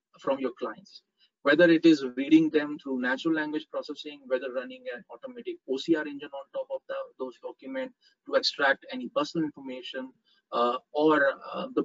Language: English